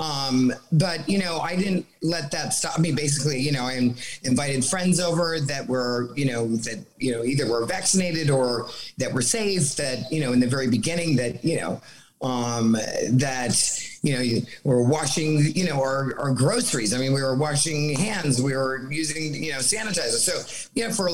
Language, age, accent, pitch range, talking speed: English, 40-59, American, 130-160 Hz, 195 wpm